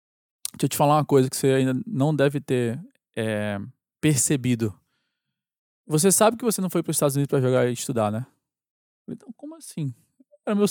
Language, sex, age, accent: Portuguese, male, 20-39, Brazilian